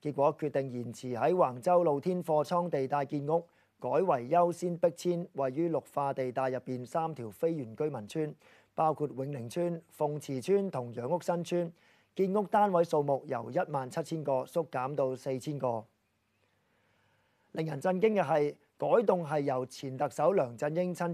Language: Chinese